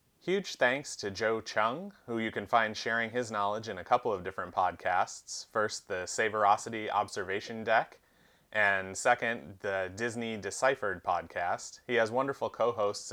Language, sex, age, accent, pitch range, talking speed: English, male, 30-49, American, 105-125 Hz, 150 wpm